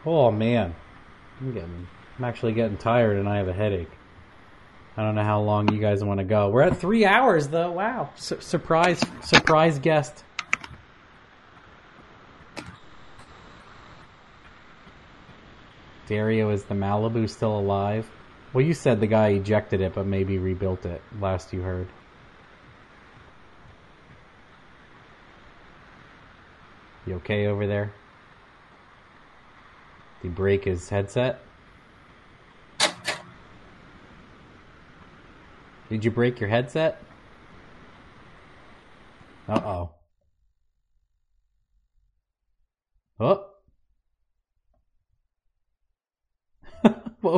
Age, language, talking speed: 30-49, English, 85 wpm